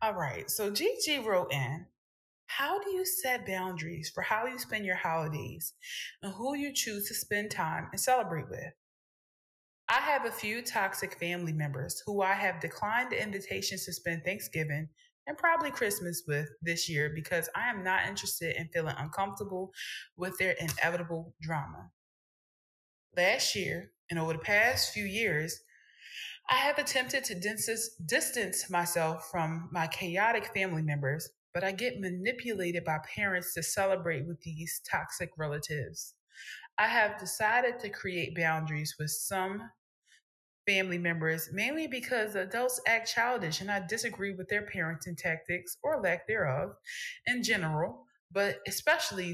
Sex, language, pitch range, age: female, English, 165-220 Hz, 20-39